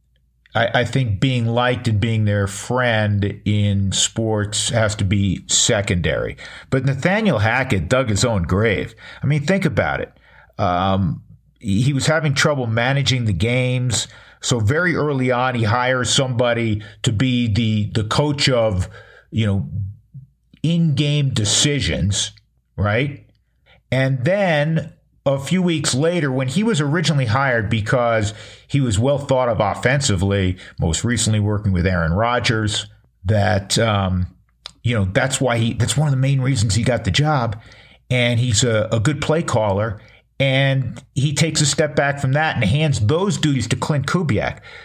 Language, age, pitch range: English, 50-69, 105-140 Hz